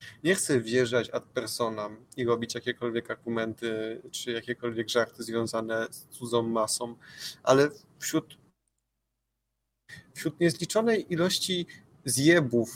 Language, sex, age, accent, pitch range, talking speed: Polish, male, 20-39, native, 115-135 Hz, 105 wpm